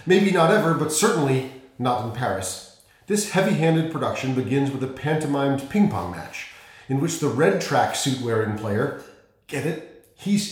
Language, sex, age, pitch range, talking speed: English, male, 40-59, 130-195 Hz, 155 wpm